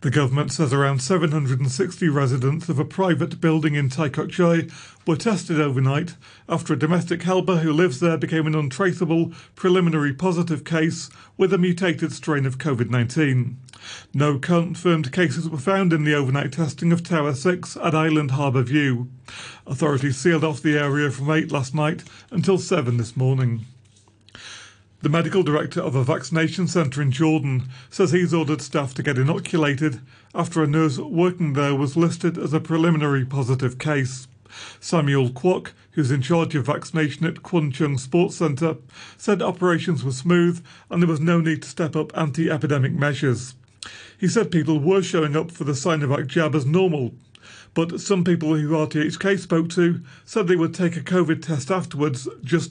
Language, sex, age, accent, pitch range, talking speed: English, male, 40-59, British, 140-170 Hz, 165 wpm